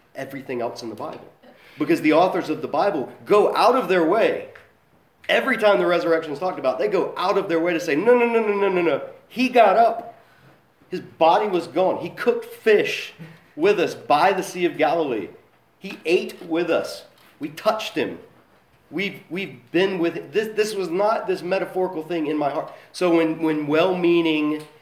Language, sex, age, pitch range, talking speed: English, male, 40-59, 135-200 Hz, 195 wpm